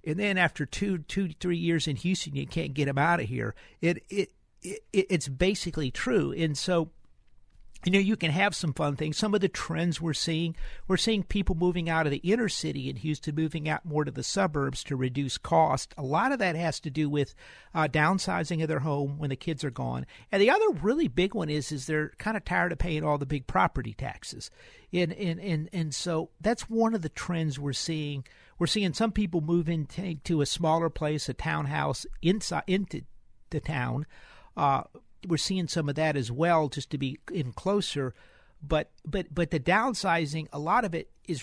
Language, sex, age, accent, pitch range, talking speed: English, male, 50-69, American, 145-180 Hz, 210 wpm